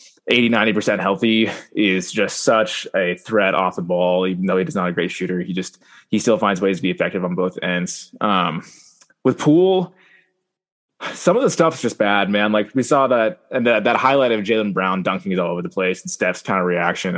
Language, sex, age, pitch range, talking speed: English, male, 20-39, 95-110 Hz, 220 wpm